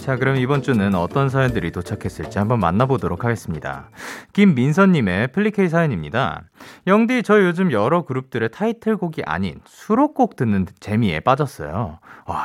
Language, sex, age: Korean, male, 30-49